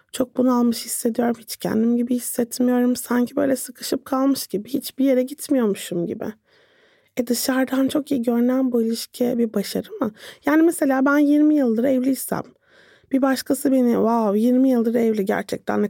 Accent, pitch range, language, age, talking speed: native, 220-270 Hz, Turkish, 30-49, 155 wpm